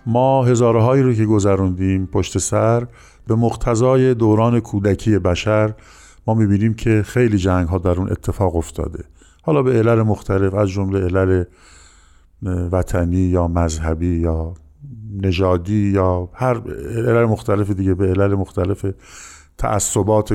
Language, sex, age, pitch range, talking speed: Persian, male, 50-69, 95-110 Hz, 130 wpm